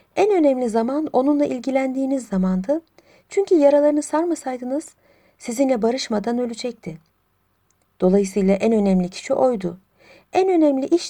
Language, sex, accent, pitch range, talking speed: Turkish, female, native, 190-270 Hz, 110 wpm